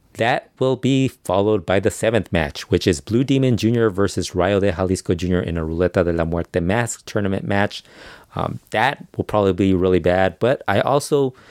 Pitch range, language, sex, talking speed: 90-105 Hz, English, male, 195 wpm